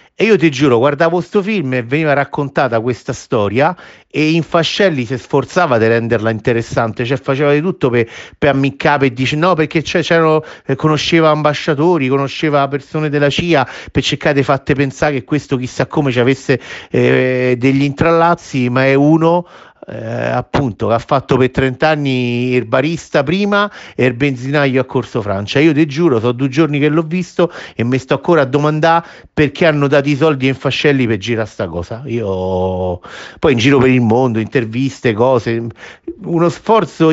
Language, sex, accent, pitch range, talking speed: Italian, male, native, 115-155 Hz, 180 wpm